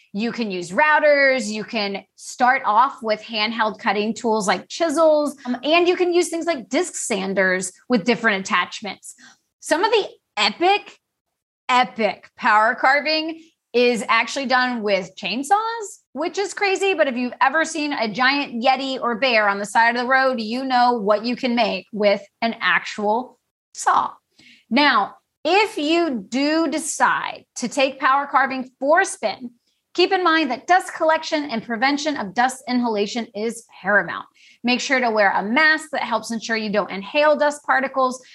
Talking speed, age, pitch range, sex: 165 wpm, 30-49, 220-295 Hz, female